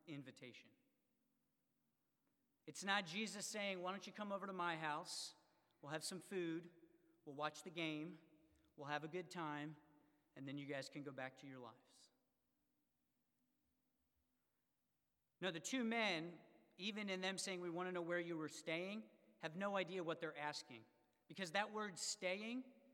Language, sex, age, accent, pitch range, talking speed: English, male, 40-59, American, 155-185 Hz, 160 wpm